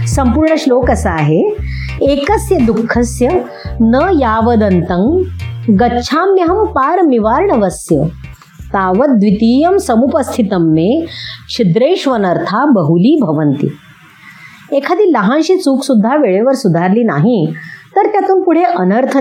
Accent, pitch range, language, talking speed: native, 205-295 Hz, Marathi, 55 wpm